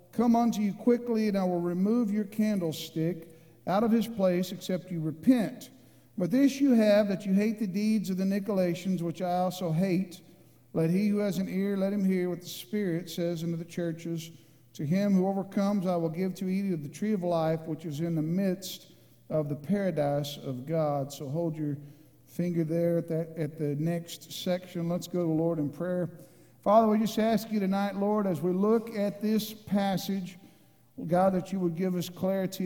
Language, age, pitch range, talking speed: English, 50-69, 170-205 Hz, 200 wpm